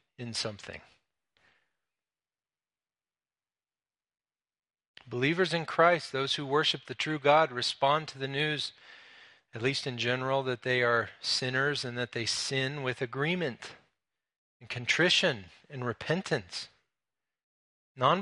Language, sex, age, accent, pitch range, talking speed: English, male, 40-59, American, 125-160 Hz, 110 wpm